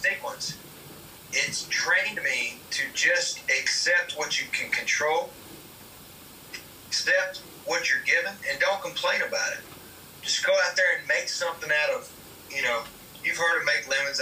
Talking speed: 150 wpm